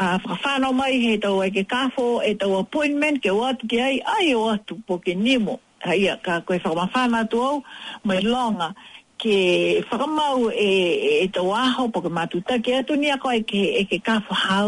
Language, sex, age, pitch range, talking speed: English, female, 50-69, 190-250 Hz, 160 wpm